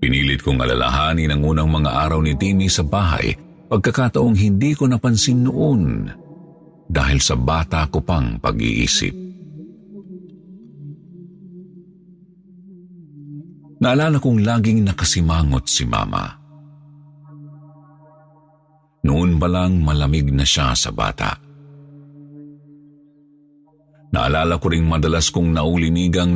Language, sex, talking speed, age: Filipino, male, 95 wpm, 50-69